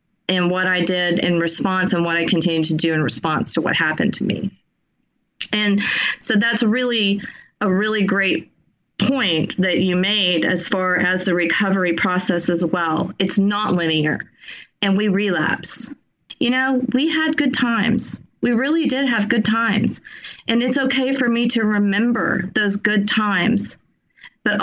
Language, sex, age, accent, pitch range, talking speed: English, female, 30-49, American, 190-230 Hz, 165 wpm